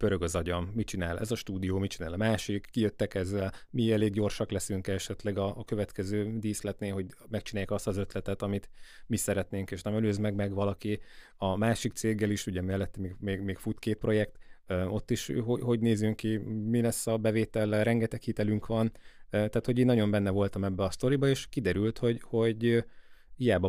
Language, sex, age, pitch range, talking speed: Hungarian, male, 30-49, 95-115 Hz, 195 wpm